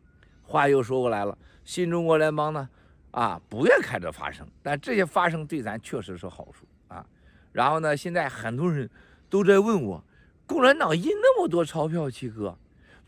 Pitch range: 135-205 Hz